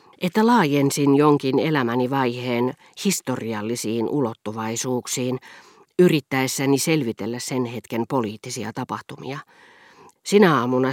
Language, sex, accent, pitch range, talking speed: Finnish, female, native, 120-155 Hz, 80 wpm